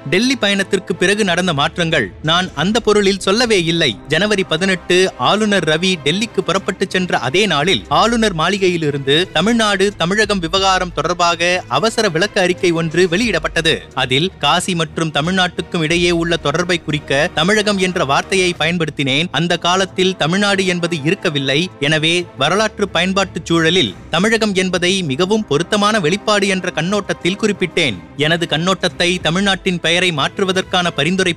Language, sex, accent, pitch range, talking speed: Tamil, male, native, 165-195 Hz, 120 wpm